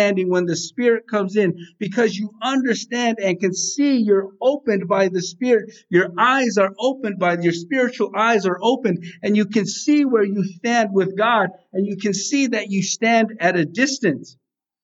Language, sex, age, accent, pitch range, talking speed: English, male, 50-69, American, 190-235 Hz, 180 wpm